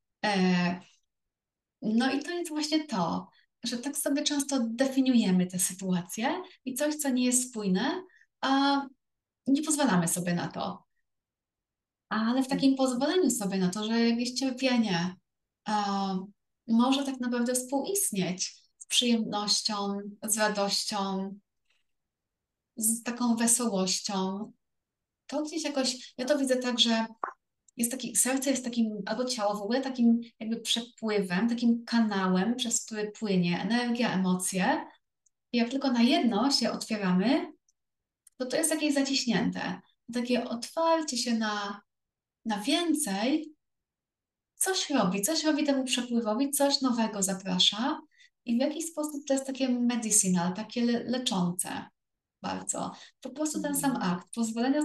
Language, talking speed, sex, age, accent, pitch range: Polish, 130 wpm, female, 30-49, native, 210-275 Hz